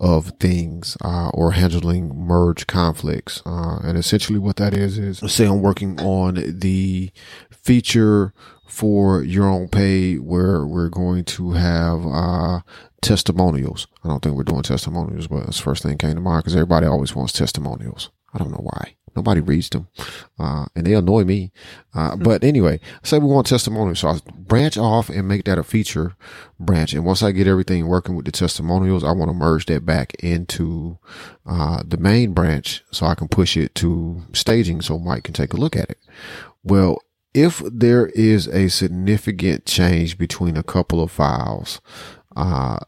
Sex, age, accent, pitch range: male, 30-49, American, 85-100 Hz